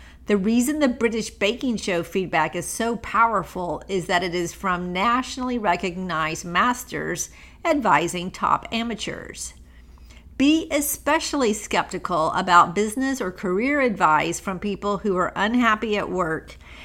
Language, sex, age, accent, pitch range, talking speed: English, female, 50-69, American, 175-225 Hz, 130 wpm